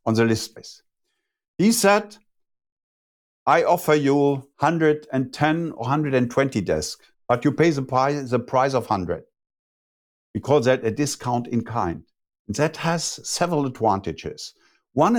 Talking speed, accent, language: 140 wpm, German, Romanian